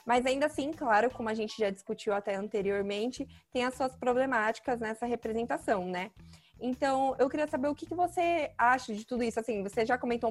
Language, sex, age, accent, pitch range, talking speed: Portuguese, female, 20-39, Brazilian, 215-260 Hz, 200 wpm